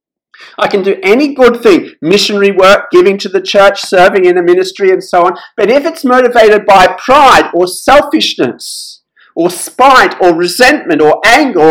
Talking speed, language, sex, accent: 170 wpm, English, male, Australian